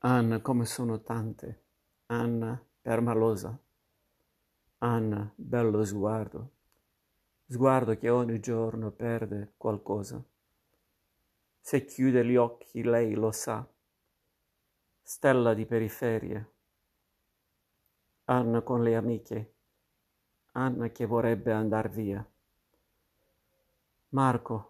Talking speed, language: 85 wpm, Italian